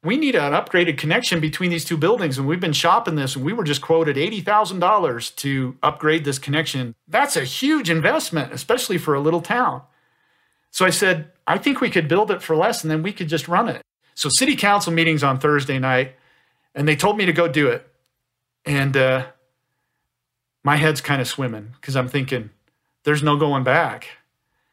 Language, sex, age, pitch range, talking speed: English, male, 40-59, 130-170 Hz, 195 wpm